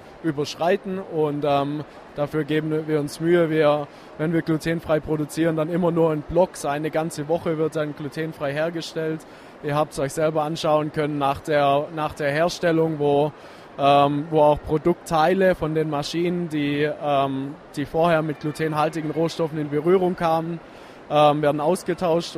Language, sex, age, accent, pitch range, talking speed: German, male, 20-39, German, 145-160 Hz, 145 wpm